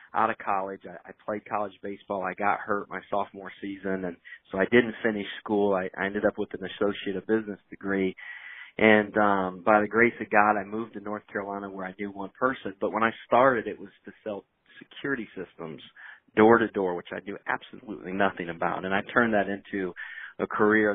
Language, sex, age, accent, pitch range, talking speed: English, male, 30-49, American, 100-125 Hz, 205 wpm